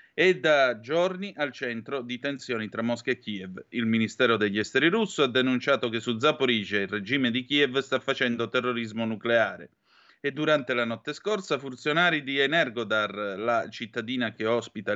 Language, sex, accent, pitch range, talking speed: Italian, male, native, 115-145 Hz, 165 wpm